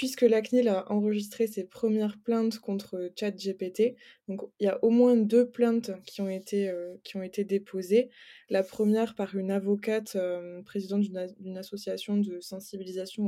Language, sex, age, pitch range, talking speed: French, female, 20-39, 195-225 Hz, 170 wpm